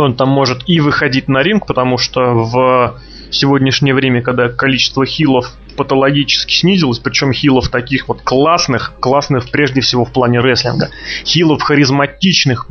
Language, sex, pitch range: Russian, male, 130-160 Hz